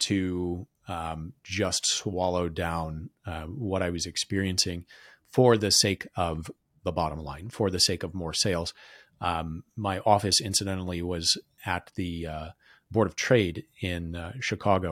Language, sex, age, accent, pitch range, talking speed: English, male, 30-49, American, 85-110 Hz, 150 wpm